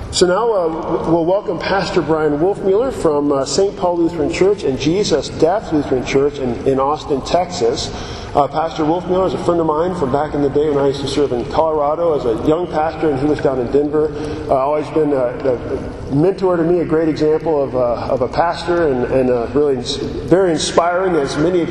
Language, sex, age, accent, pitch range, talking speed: English, male, 40-59, American, 140-160 Hz, 220 wpm